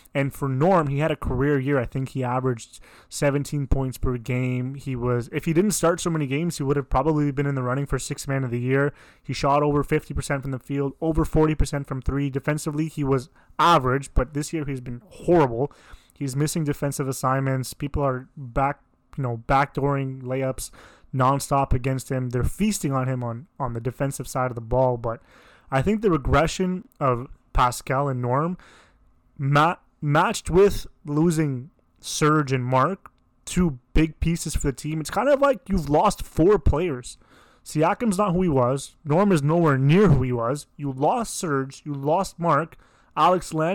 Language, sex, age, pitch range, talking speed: English, male, 20-39, 130-155 Hz, 185 wpm